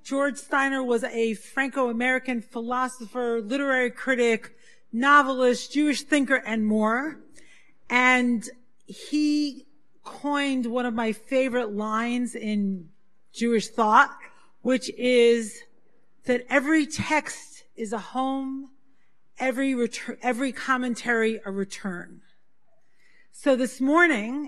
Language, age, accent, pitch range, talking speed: English, 40-59, American, 225-280 Hz, 100 wpm